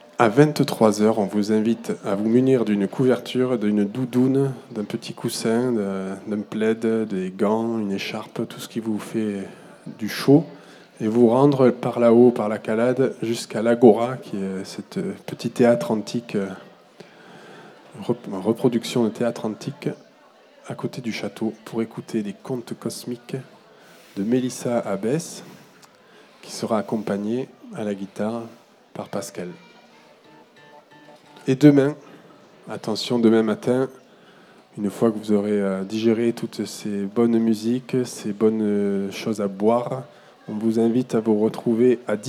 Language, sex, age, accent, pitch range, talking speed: French, male, 20-39, French, 105-125 Hz, 135 wpm